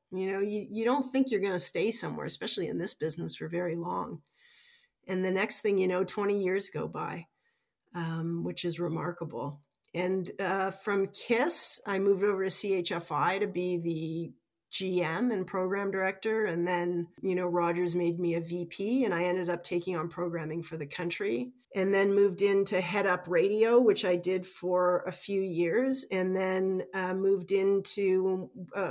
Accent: American